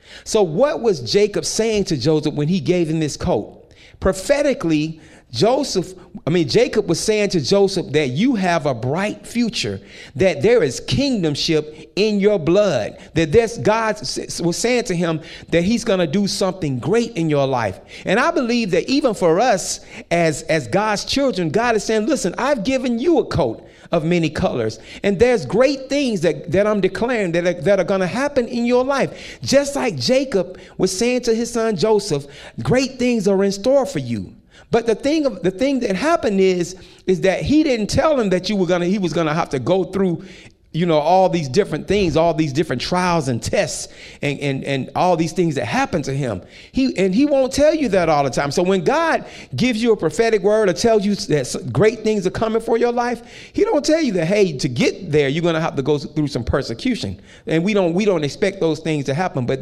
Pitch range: 155-225 Hz